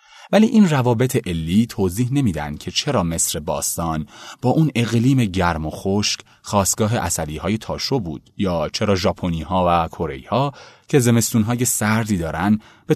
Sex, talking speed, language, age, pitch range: male, 155 wpm, Persian, 30-49, 85-120 Hz